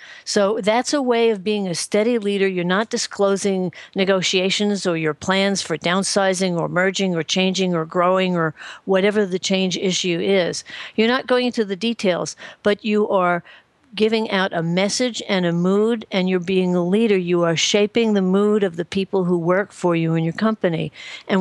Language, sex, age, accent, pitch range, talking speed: English, female, 50-69, American, 180-220 Hz, 190 wpm